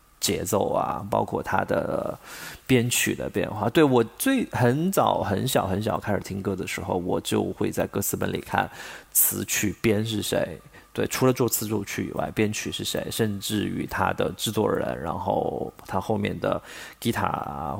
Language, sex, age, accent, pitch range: Chinese, male, 30-49, native, 100-120 Hz